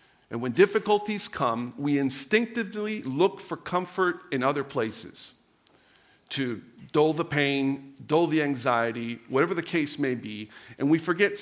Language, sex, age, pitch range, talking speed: English, male, 50-69, 130-185 Hz, 140 wpm